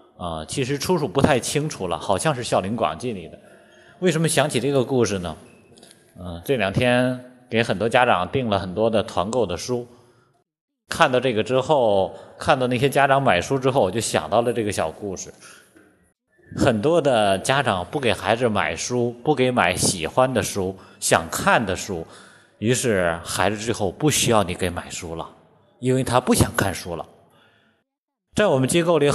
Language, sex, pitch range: Chinese, male, 100-140 Hz